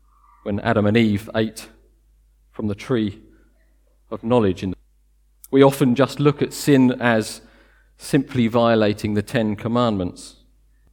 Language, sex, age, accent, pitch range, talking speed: English, male, 40-59, British, 90-120 Hz, 120 wpm